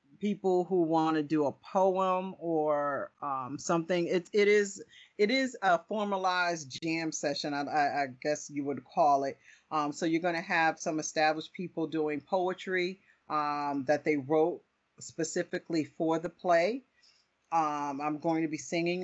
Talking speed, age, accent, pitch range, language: 160 wpm, 40-59, American, 145-175 Hz, English